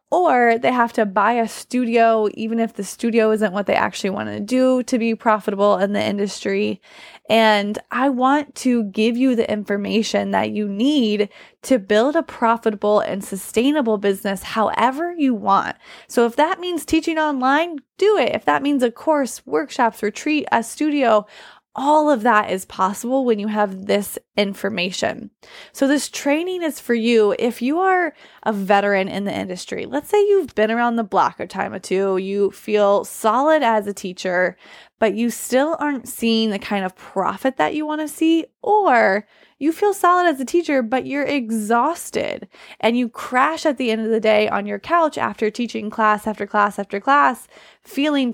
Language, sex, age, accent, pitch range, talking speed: English, female, 20-39, American, 210-275 Hz, 180 wpm